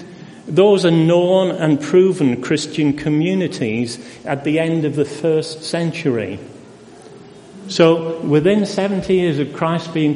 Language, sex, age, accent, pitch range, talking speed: English, male, 40-59, British, 140-170 Hz, 125 wpm